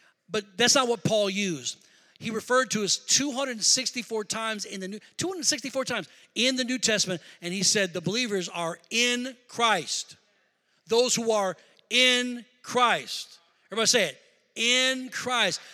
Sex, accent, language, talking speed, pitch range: male, American, English, 150 wpm, 220-275 Hz